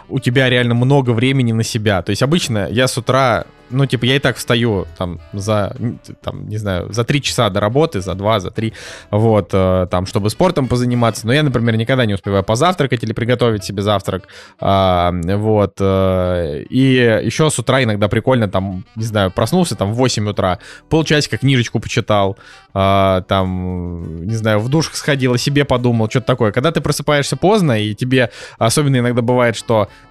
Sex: male